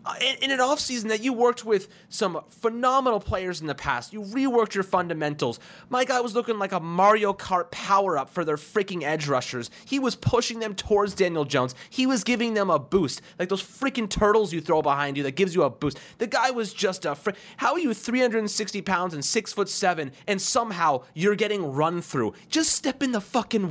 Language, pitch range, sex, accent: English, 160-230 Hz, male, American